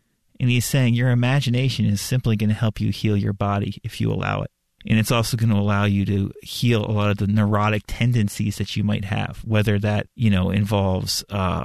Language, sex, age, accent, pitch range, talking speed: English, male, 30-49, American, 105-115 Hz, 220 wpm